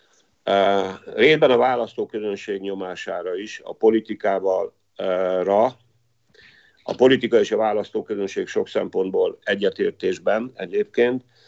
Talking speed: 100 wpm